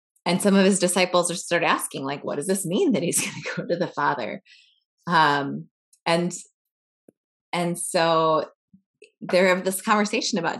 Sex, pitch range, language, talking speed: female, 160-200 Hz, English, 170 wpm